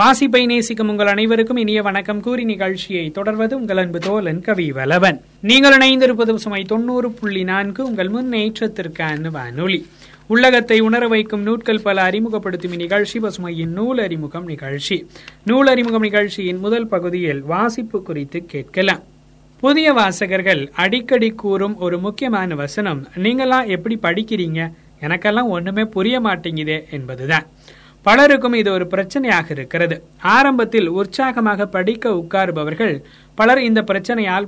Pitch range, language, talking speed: 175-230 Hz, Tamil, 115 wpm